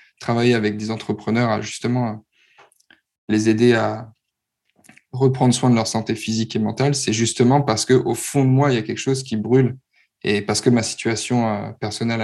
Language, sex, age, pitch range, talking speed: French, male, 20-39, 110-130 Hz, 180 wpm